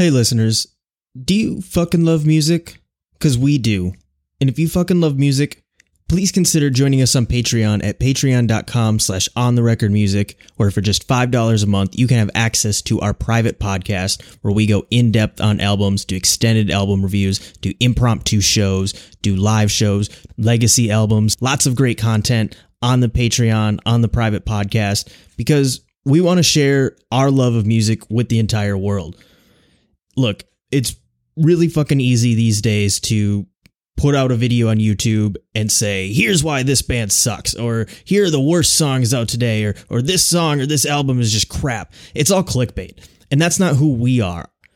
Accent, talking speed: American, 180 wpm